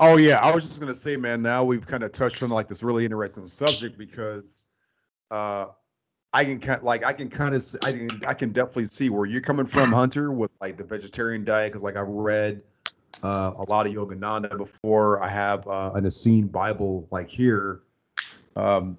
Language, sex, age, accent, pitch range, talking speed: English, male, 30-49, American, 95-115 Hz, 210 wpm